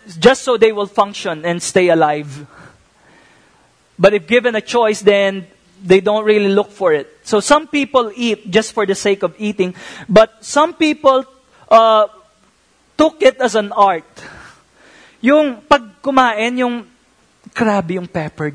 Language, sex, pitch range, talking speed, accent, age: English, male, 200-255 Hz, 145 wpm, Filipino, 20-39